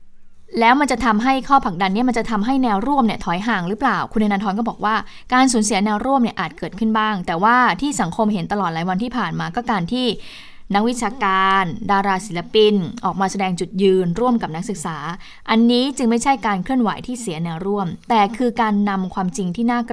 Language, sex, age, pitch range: Thai, female, 20-39, 185-230 Hz